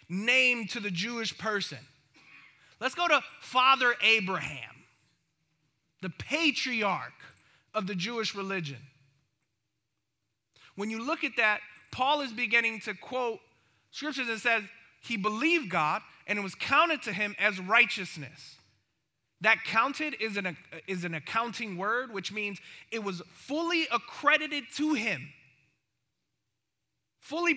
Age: 20-39